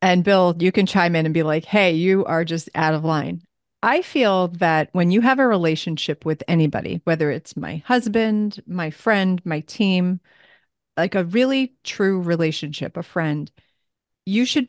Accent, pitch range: American, 160-210 Hz